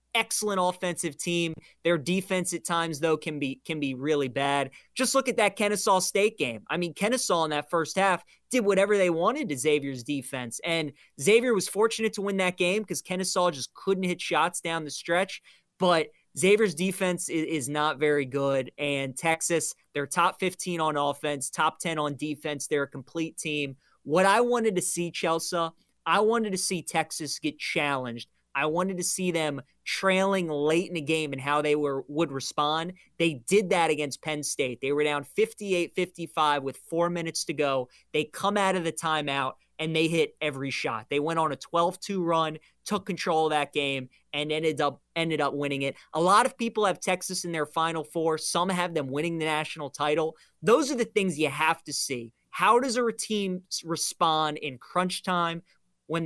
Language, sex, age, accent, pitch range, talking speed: English, male, 20-39, American, 150-185 Hz, 195 wpm